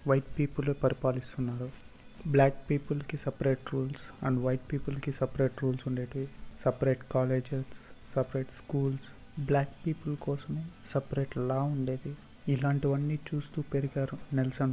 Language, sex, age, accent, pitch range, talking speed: Telugu, male, 30-49, native, 130-140 Hz, 110 wpm